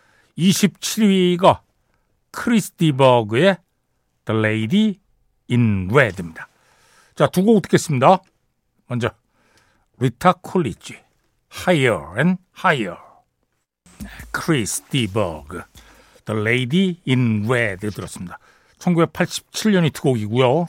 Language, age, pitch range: Korean, 60-79, 125-190 Hz